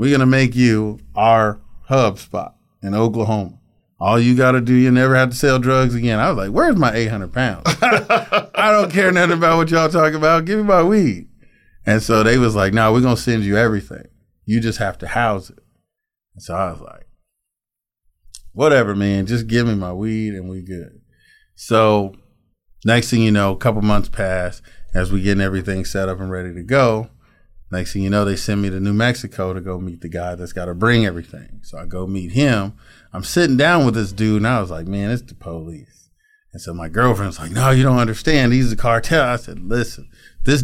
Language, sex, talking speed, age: English, male, 220 wpm, 30-49